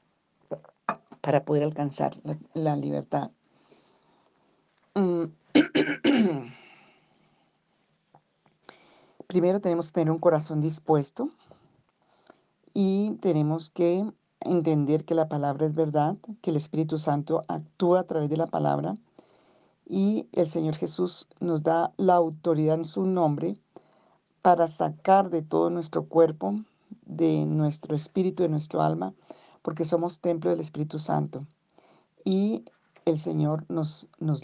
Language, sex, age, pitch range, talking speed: Spanish, female, 40-59, 155-175 Hz, 115 wpm